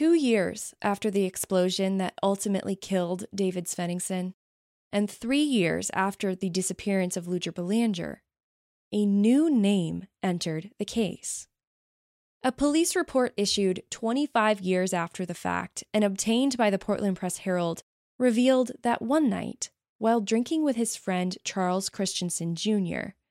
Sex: female